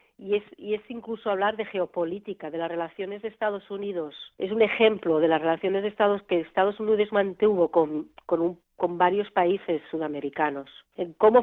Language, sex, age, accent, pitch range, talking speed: English, female, 40-59, Spanish, 175-220 Hz, 165 wpm